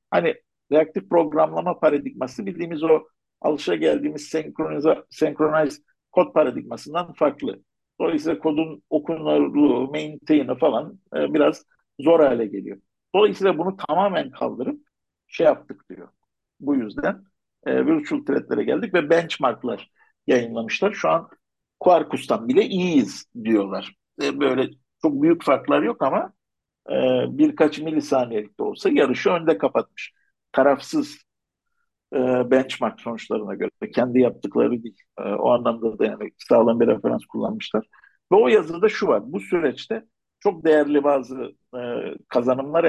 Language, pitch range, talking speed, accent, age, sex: Turkish, 140-205 Hz, 125 wpm, native, 50-69, male